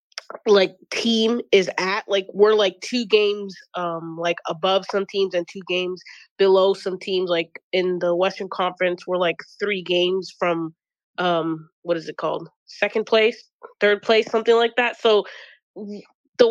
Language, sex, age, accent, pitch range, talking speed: English, female, 20-39, American, 175-210 Hz, 160 wpm